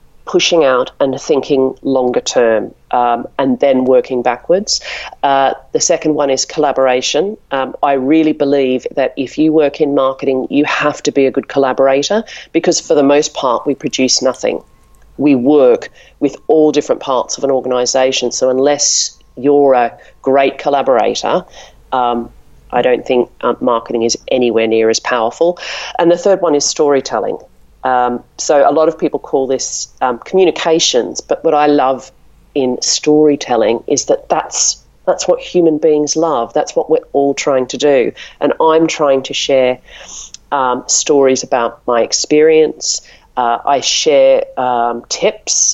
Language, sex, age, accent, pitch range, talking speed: English, female, 40-59, Australian, 130-155 Hz, 155 wpm